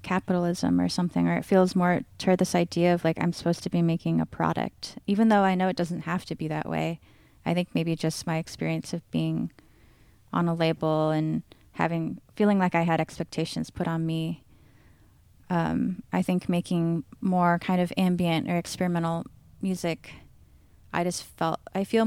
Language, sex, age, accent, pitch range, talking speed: English, female, 20-39, American, 155-185 Hz, 180 wpm